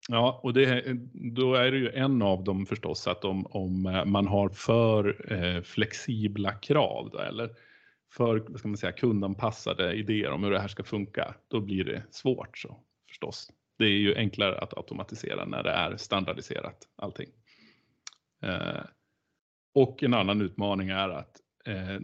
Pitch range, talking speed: 100-125 Hz, 160 wpm